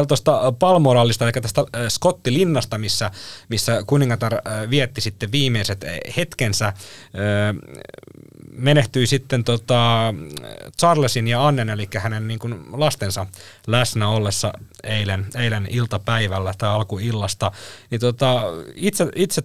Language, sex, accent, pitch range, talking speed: Finnish, male, native, 105-140 Hz, 105 wpm